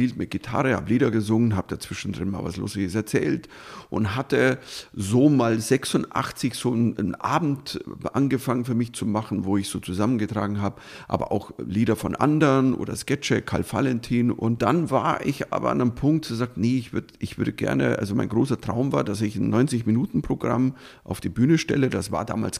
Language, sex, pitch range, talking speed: German, male, 100-135 Hz, 185 wpm